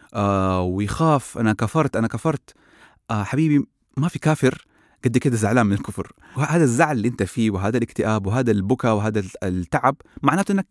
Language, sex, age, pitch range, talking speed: Arabic, male, 30-49, 100-135 Hz, 165 wpm